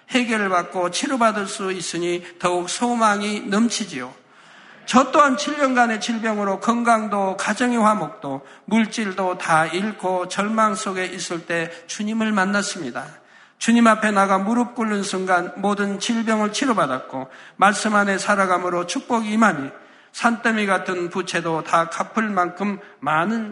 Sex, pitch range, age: male, 185-230 Hz, 50-69